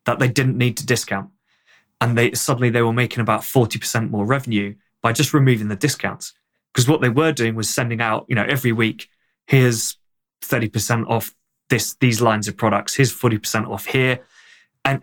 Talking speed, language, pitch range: 185 wpm, English, 110-130 Hz